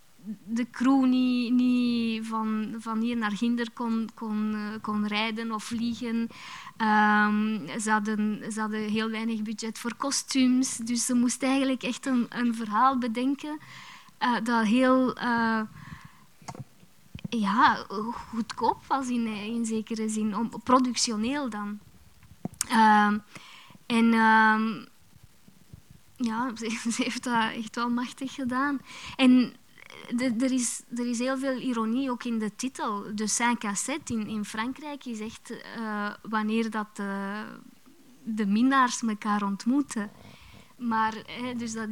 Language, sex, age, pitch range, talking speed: Dutch, female, 20-39, 215-245 Hz, 115 wpm